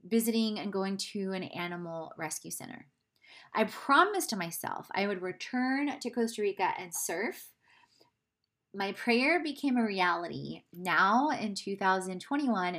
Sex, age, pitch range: female, 30-49, 190-245 Hz